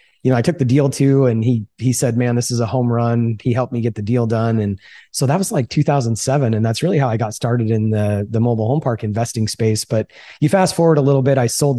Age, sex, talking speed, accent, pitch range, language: 30-49, male, 275 wpm, American, 115-130 Hz, English